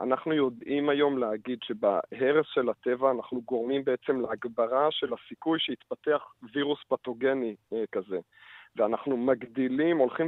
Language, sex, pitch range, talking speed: Hebrew, male, 115-145 Hz, 115 wpm